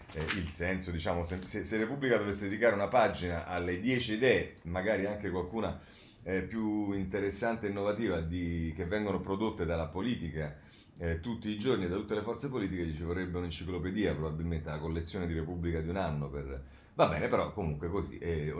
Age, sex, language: 40-59, male, Italian